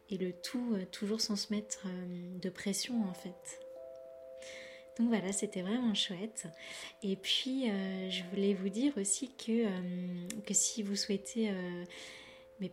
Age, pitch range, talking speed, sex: 20-39, 185-225 Hz, 155 wpm, female